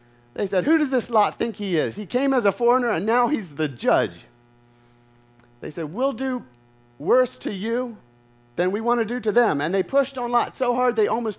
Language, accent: English, American